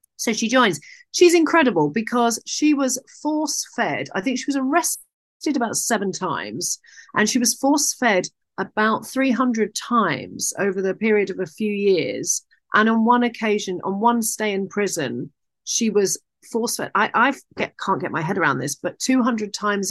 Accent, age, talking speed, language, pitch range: British, 40-59, 175 wpm, English, 180-245 Hz